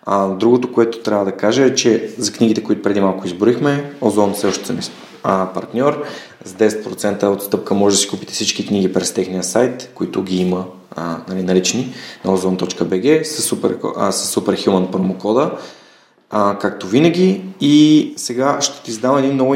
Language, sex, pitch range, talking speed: Bulgarian, male, 100-125 Hz, 155 wpm